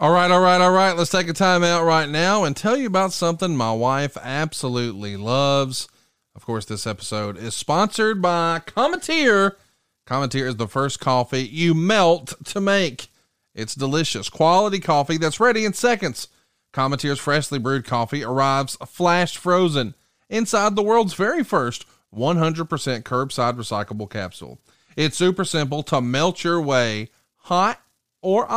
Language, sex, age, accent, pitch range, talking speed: English, male, 30-49, American, 120-180 Hz, 150 wpm